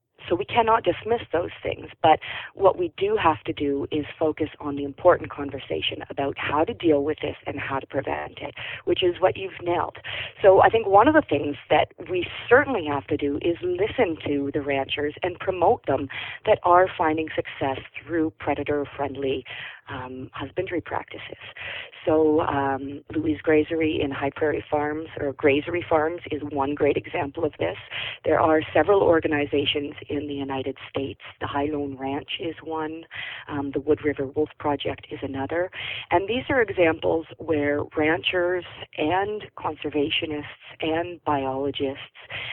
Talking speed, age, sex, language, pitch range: 160 wpm, 40-59, female, English, 140-170 Hz